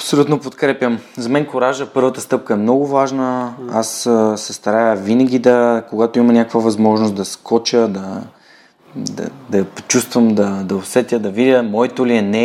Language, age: Bulgarian, 20-39